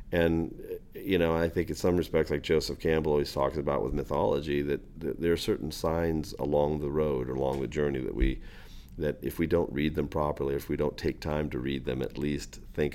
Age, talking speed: 40-59, 220 wpm